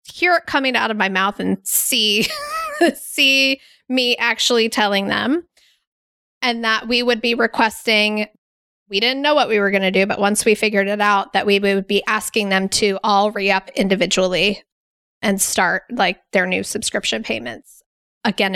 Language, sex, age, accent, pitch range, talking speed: English, female, 20-39, American, 200-235 Hz, 170 wpm